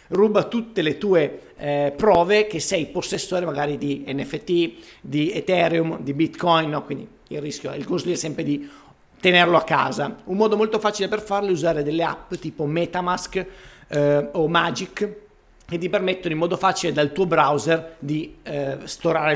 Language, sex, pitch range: Italian, male, 145-185 Hz